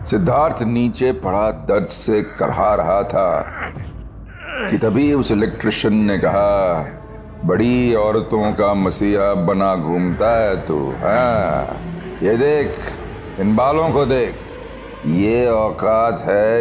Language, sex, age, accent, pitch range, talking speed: Hindi, male, 40-59, native, 100-125 Hz, 110 wpm